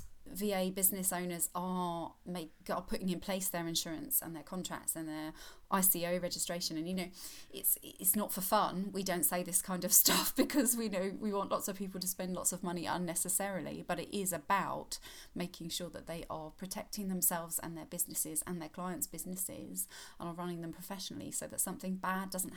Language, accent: English, British